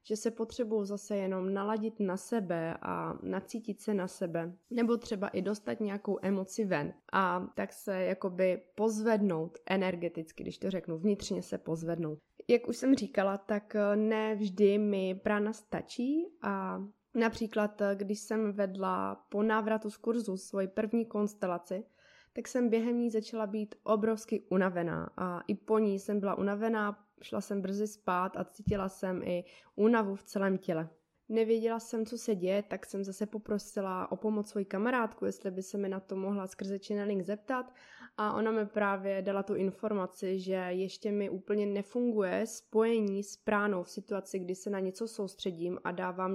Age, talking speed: 20-39, 165 wpm